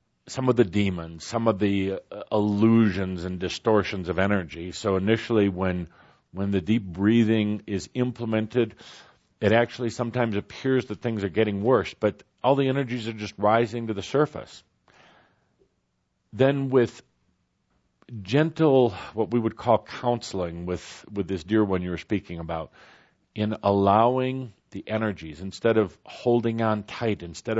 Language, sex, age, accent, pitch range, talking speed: English, male, 50-69, American, 95-115 Hz, 150 wpm